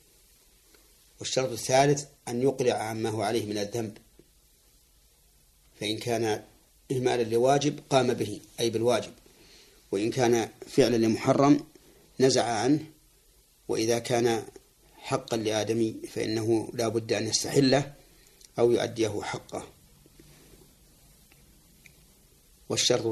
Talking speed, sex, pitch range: 95 wpm, male, 105-125 Hz